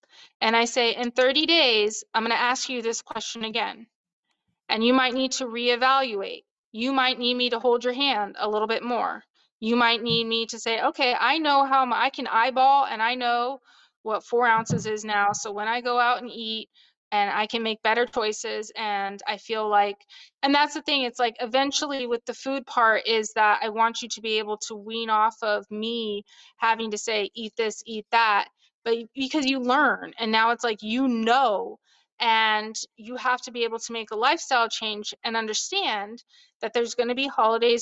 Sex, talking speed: female, 205 wpm